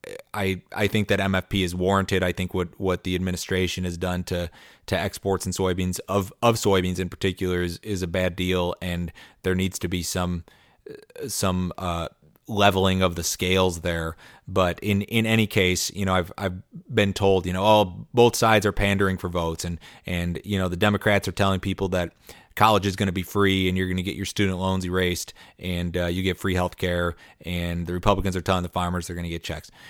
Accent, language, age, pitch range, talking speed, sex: American, English, 30-49, 90-100 Hz, 215 wpm, male